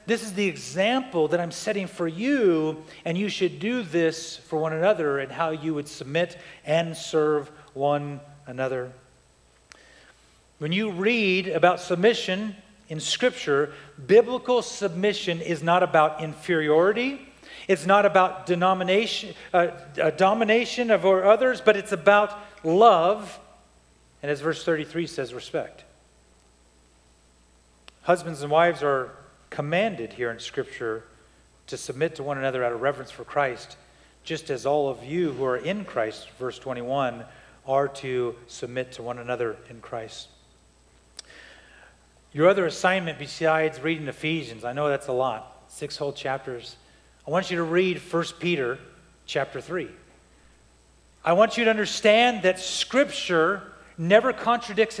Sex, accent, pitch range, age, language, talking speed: male, American, 130-190 Hz, 40-59, English, 135 wpm